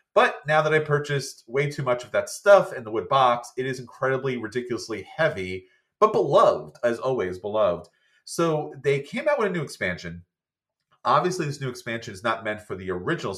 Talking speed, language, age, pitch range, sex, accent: 195 wpm, English, 30-49, 105-140 Hz, male, American